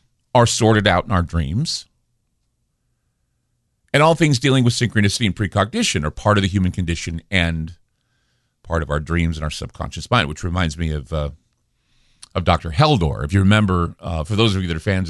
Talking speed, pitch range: 190 wpm, 85-110 Hz